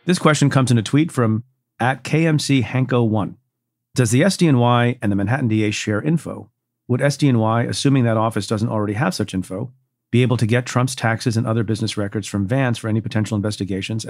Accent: American